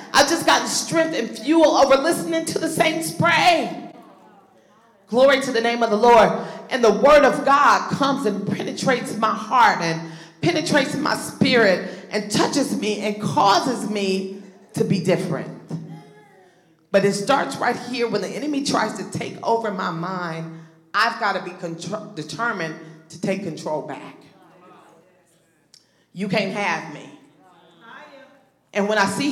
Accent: American